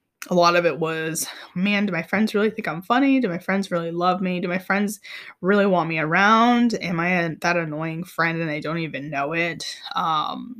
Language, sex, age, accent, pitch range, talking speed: English, female, 10-29, American, 165-205 Hz, 220 wpm